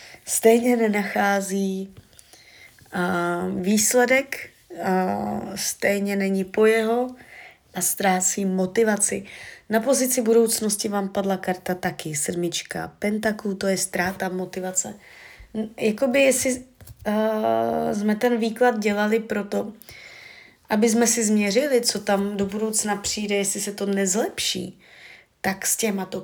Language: Czech